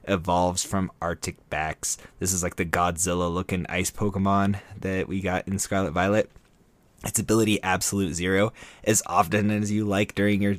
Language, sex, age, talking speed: English, male, 20-39, 165 wpm